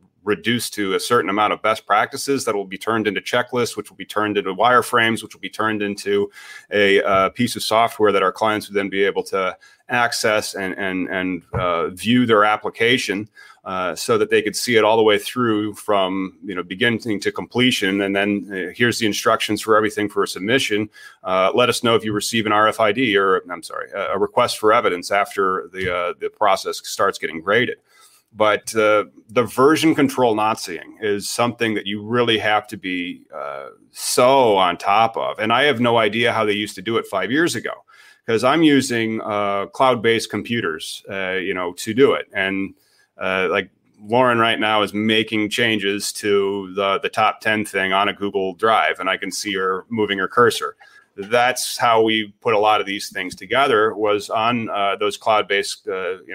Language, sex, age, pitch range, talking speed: English, male, 30-49, 100-125 Hz, 200 wpm